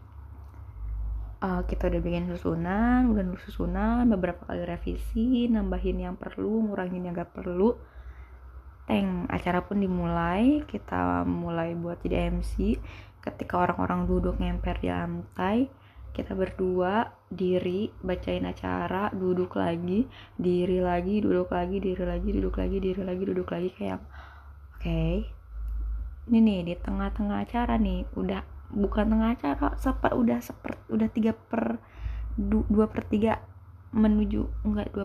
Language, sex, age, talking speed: Indonesian, female, 20-39, 120 wpm